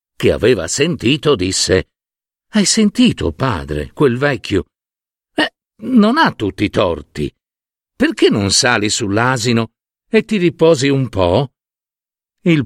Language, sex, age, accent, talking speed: Italian, male, 50-69, native, 120 wpm